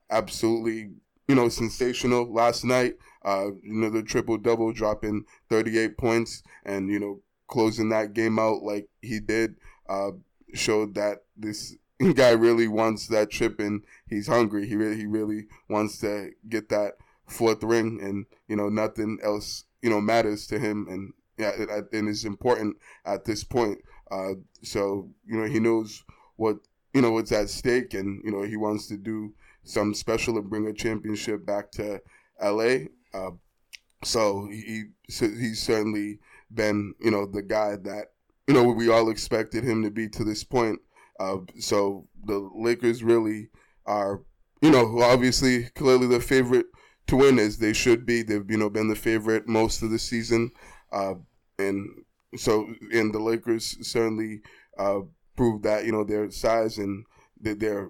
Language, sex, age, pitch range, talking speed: English, male, 20-39, 105-115 Hz, 170 wpm